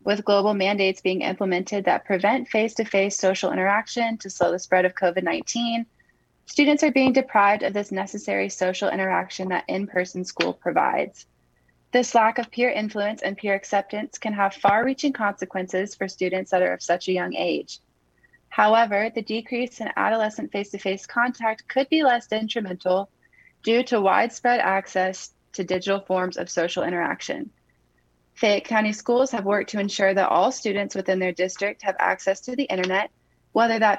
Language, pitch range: English, 185-225 Hz